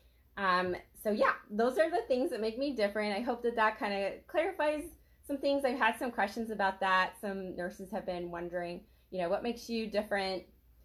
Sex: female